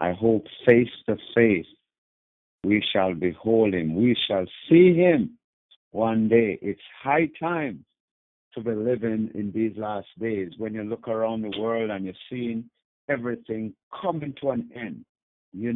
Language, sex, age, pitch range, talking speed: English, male, 60-79, 105-135 Hz, 150 wpm